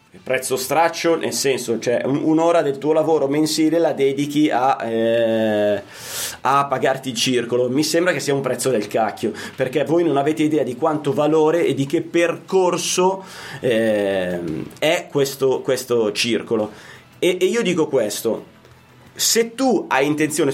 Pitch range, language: 120-165 Hz, Italian